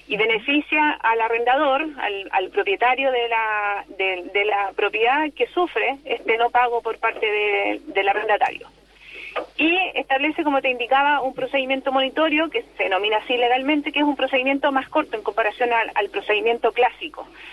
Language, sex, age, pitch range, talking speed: Spanish, female, 30-49, 220-290 Hz, 165 wpm